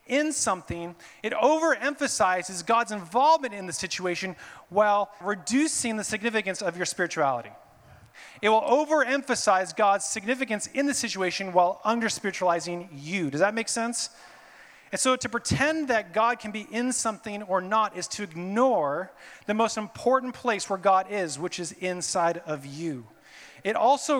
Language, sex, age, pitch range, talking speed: English, male, 30-49, 185-235 Hz, 150 wpm